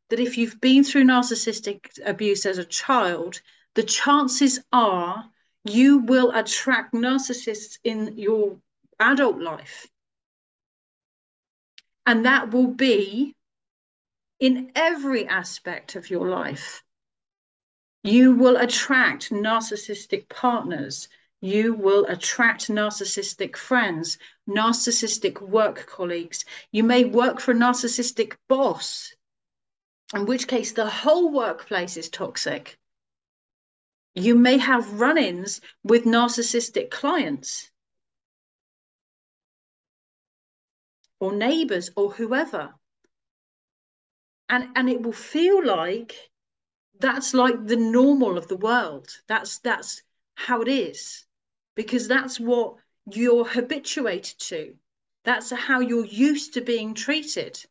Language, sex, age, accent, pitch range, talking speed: English, female, 40-59, British, 215-260 Hz, 105 wpm